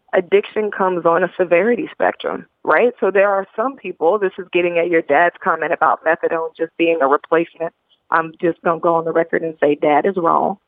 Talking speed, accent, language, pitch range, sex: 215 wpm, American, English, 170-225 Hz, female